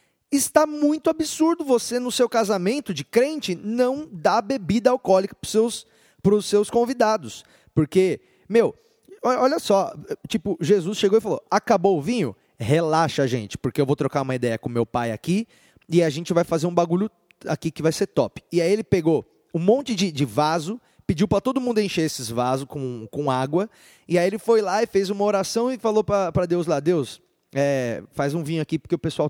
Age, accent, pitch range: 20-39, Brazilian, 160-220 Hz